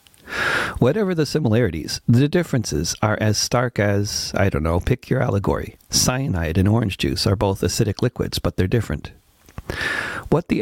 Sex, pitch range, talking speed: male, 95-120 Hz, 160 wpm